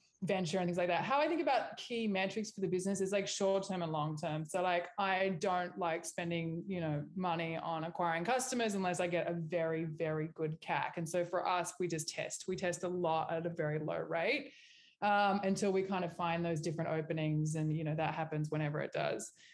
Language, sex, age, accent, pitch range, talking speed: English, female, 20-39, Australian, 165-195 Hz, 225 wpm